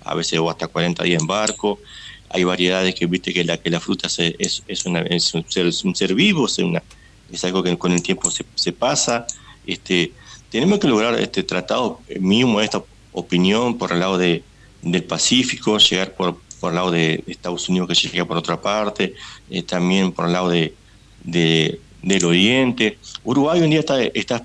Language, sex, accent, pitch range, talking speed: Spanish, male, Argentinian, 85-100 Hz, 180 wpm